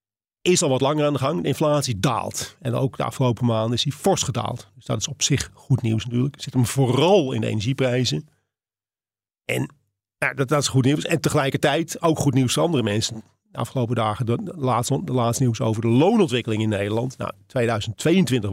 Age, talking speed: 40-59, 205 wpm